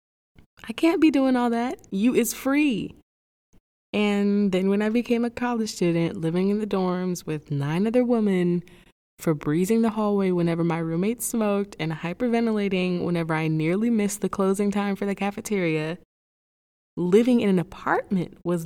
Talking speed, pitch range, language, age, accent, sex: 160 wpm, 175-250 Hz, English, 20-39, American, female